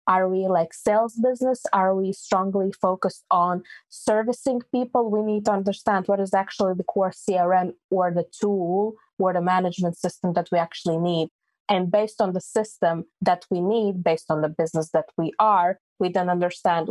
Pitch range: 175-200 Hz